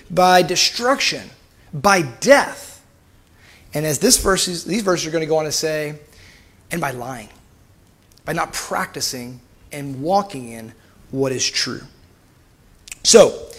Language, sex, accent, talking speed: English, male, American, 135 wpm